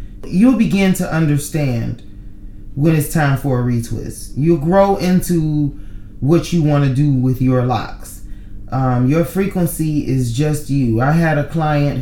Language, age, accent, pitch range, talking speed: English, 20-39, American, 115-155 Hz, 160 wpm